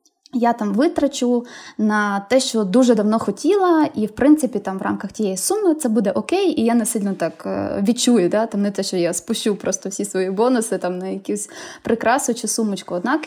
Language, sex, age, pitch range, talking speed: Ukrainian, female, 20-39, 205-265 Hz, 205 wpm